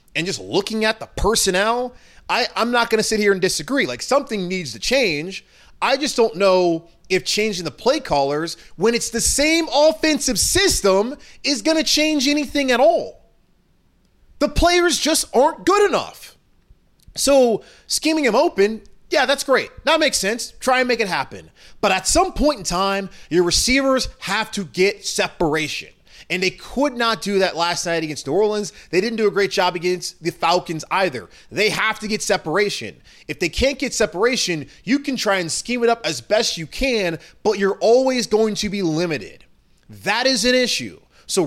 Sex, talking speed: male, 185 wpm